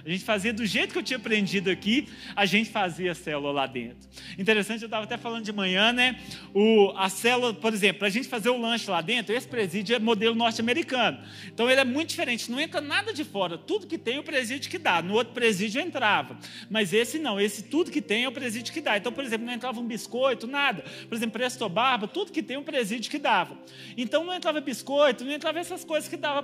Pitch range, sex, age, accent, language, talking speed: 210-275 Hz, male, 40-59, Brazilian, Portuguese, 245 wpm